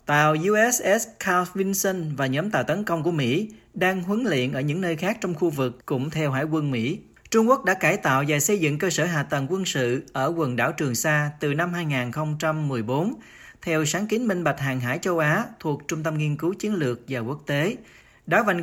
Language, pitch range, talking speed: Vietnamese, 140-185 Hz, 220 wpm